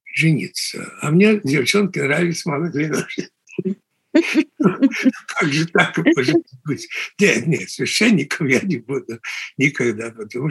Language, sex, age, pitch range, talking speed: Russian, male, 60-79, 150-205 Hz, 115 wpm